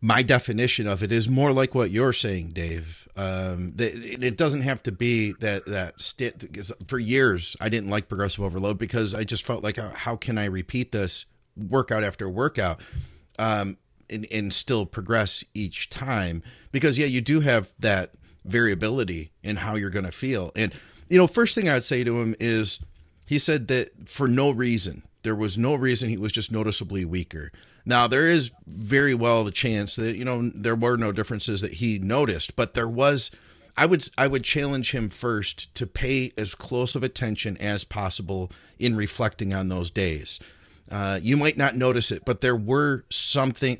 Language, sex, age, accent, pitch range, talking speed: English, male, 40-59, American, 100-125 Hz, 185 wpm